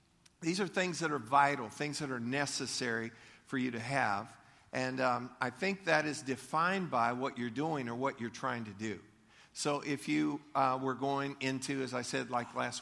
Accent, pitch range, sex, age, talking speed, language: American, 115-145 Hz, male, 50-69, 200 wpm, English